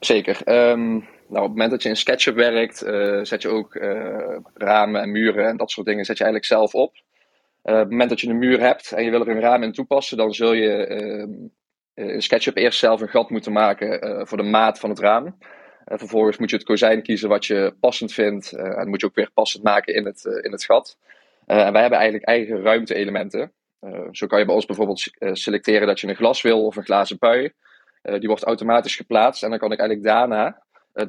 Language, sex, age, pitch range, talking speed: Dutch, male, 20-39, 105-120 Hz, 240 wpm